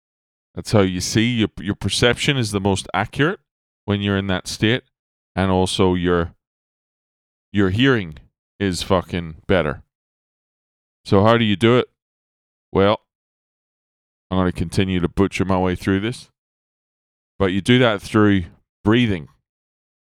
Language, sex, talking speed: English, male, 140 wpm